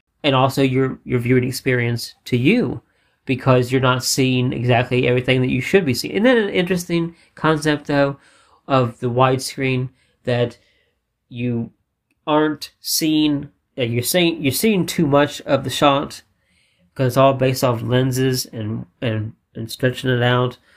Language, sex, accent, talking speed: English, male, American, 155 wpm